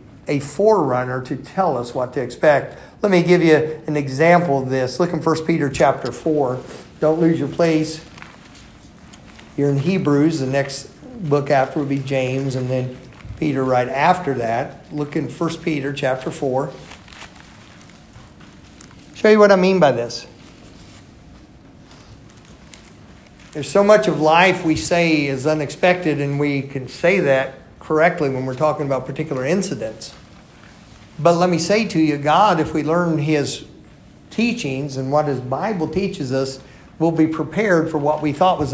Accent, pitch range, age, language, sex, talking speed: American, 135-165 Hz, 50-69, English, male, 160 wpm